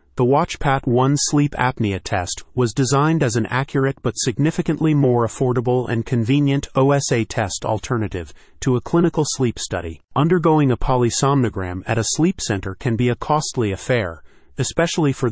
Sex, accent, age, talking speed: male, American, 30-49, 155 wpm